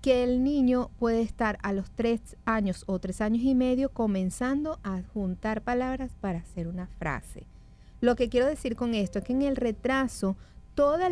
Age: 40-59